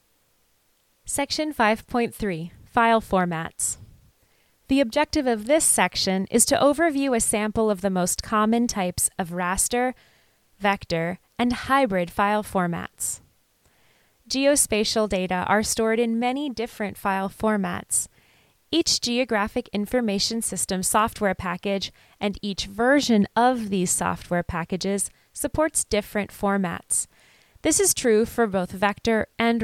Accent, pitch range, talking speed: American, 190-245 Hz, 115 wpm